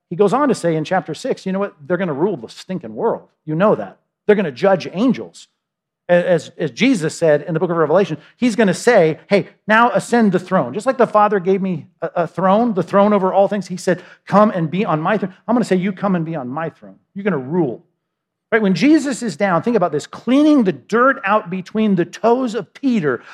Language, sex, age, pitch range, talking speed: English, male, 50-69, 165-210 Hz, 250 wpm